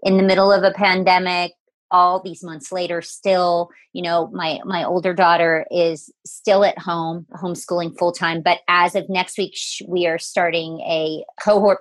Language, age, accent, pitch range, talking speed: English, 40-59, American, 175-205 Hz, 170 wpm